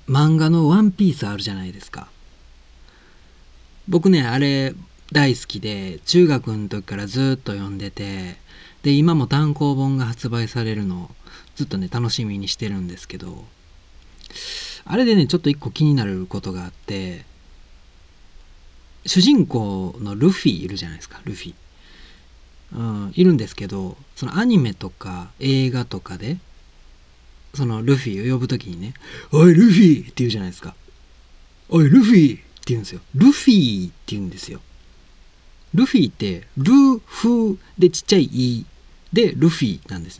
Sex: male